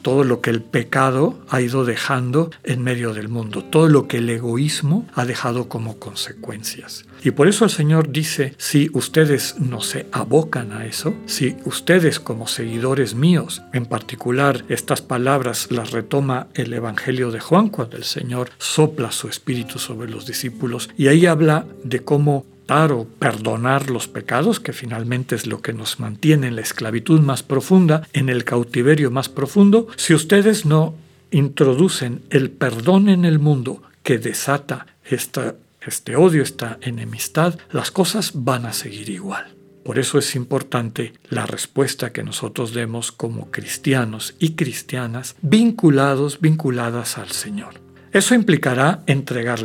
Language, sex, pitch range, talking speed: Spanish, male, 120-155 Hz, 150 wpm